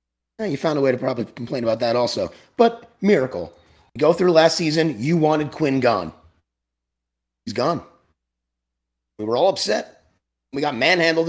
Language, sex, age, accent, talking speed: English, male, 30-49, American, 160 wpm